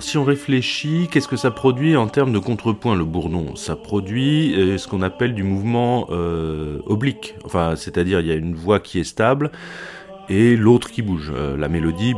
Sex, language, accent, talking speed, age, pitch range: male, French, French, 190 wpm, 30-49, 85-125 Hz